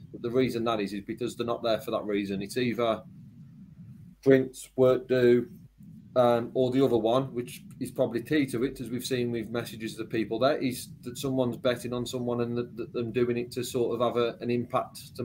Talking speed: 210 wpm